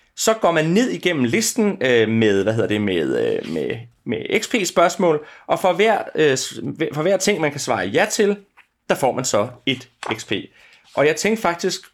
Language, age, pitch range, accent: Danish, 30-49, 135-205 Hz, native